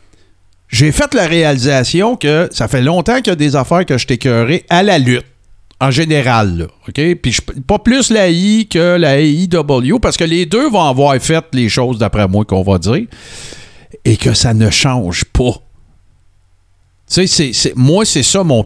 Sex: male